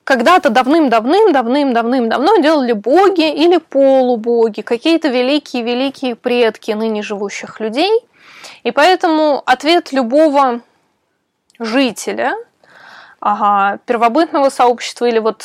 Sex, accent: female, native